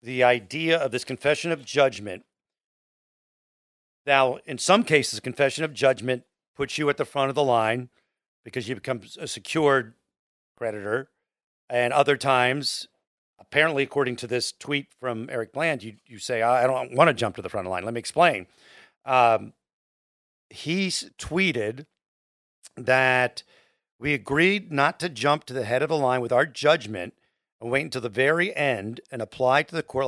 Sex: male